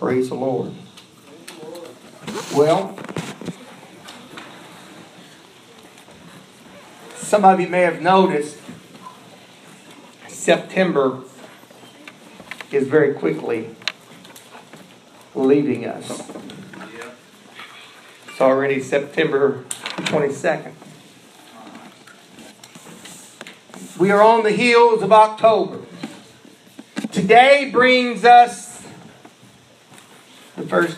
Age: 50-69